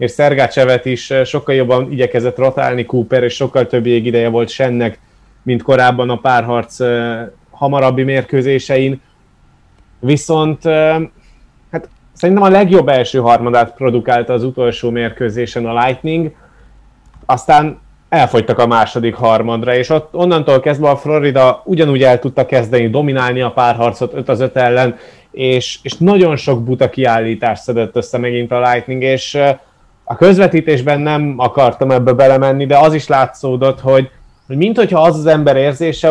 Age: 30-49